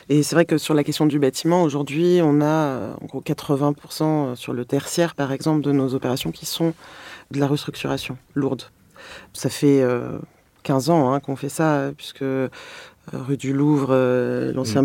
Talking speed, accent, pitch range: 160 wpm, French, 135-155 Hz